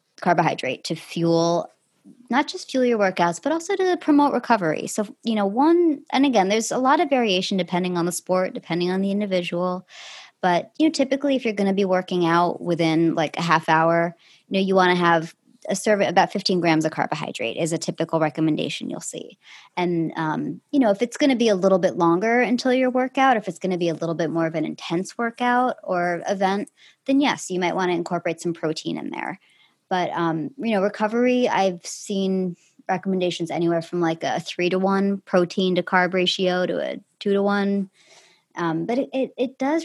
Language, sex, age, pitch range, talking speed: English, male, 20-39, 170-235 Hz, 210 wpm